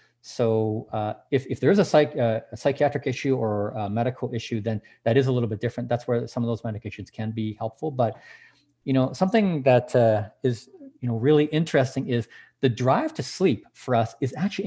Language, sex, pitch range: English, male, 110-150 Hz